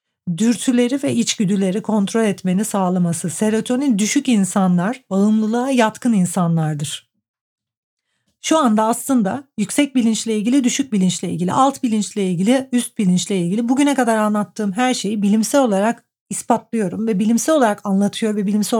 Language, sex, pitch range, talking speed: Turkish, female, 190-230 Hz, 130 wpm